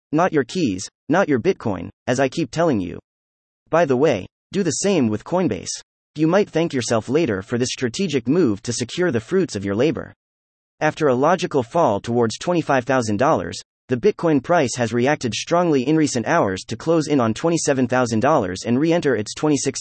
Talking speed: 190 wpm